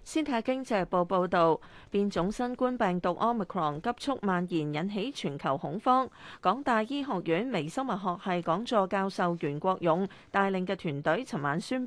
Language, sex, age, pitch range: Chinese, female, 30-49, 170-230 Hz